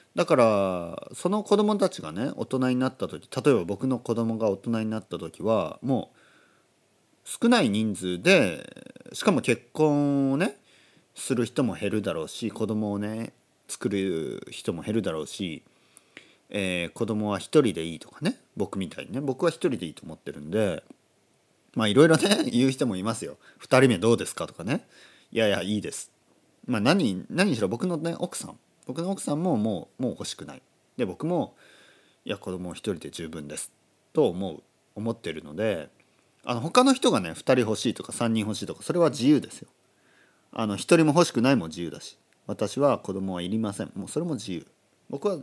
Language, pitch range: Japanese, 100-140 Hz